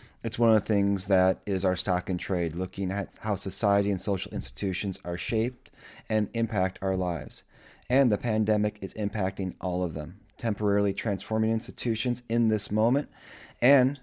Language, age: English, 30-49